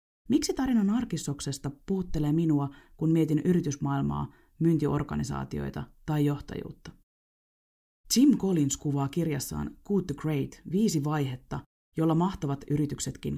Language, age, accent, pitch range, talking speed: Finnish, 30-49, native, 140-180 Hz, 105 wpm